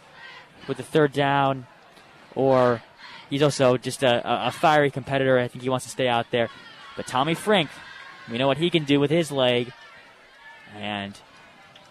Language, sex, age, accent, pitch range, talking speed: English, male, 10-29, American, 125-155 Hz, 165 wpm